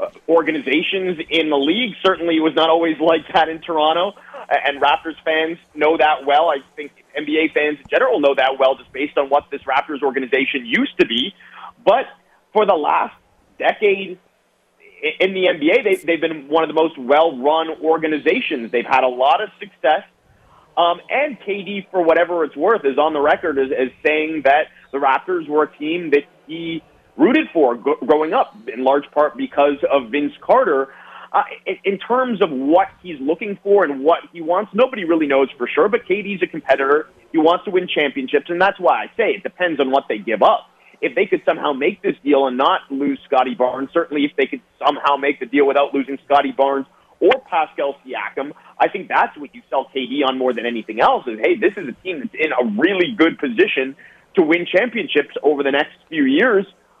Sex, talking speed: male, 200 wpm